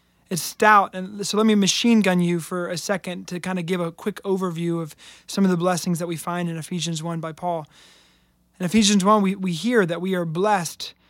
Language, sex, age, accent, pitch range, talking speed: English, male, 20-39, American, 160-185 Hz, 225 wpm